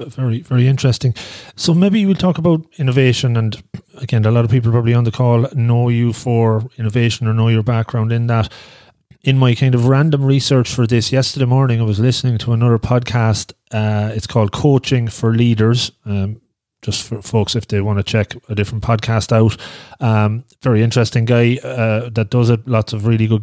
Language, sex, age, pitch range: English, male, 30-49, 110-125 Hz